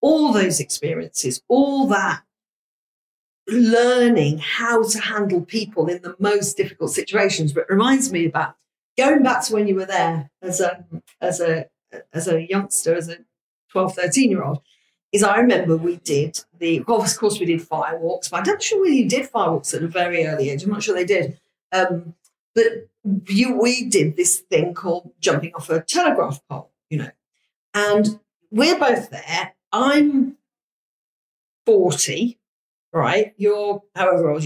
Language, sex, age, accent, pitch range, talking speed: English, female, 50-69, British, 175-245 Hz, 165 wpm